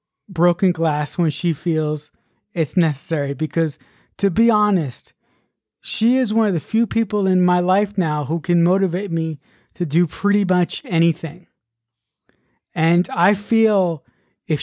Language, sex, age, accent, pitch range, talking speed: English, male, 20-39, American, 160-200 Hz, 145 wpm